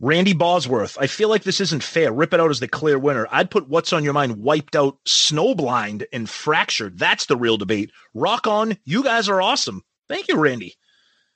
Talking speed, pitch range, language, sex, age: 205 wpm, 120-175 Hz, English, male, 30-49